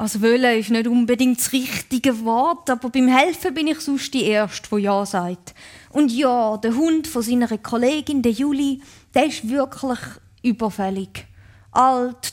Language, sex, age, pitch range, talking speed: German, female, 20-39, 215-275 Hz, 160 wpm